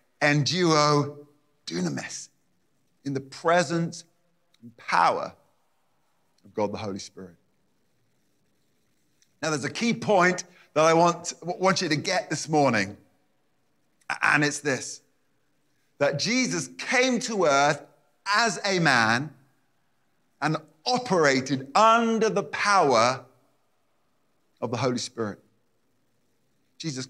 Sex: male